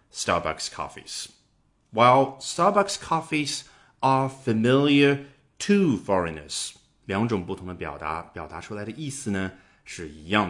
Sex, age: male, 30-49